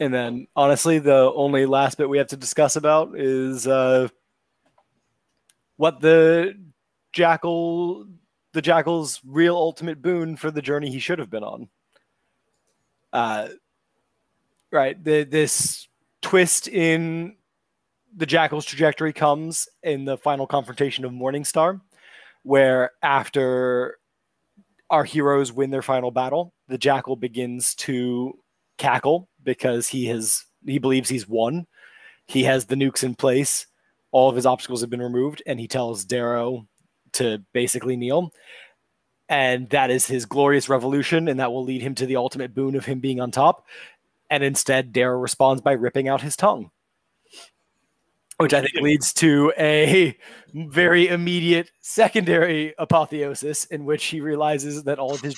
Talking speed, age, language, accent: 145 wpm, 20-39, English, American